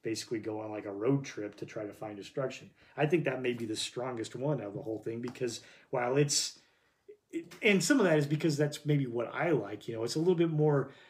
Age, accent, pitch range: 30-49, American, 120-155 Hz